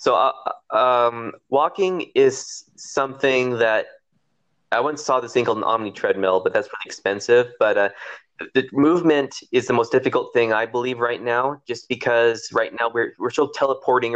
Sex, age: male, 20-39